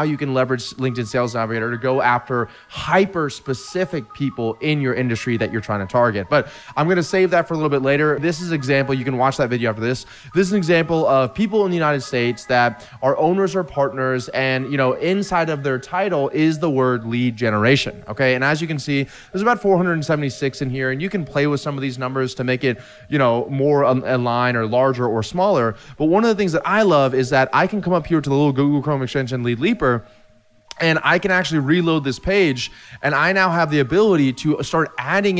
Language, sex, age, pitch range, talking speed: English, male, 20-39, 125-160 Hz, 240 wpm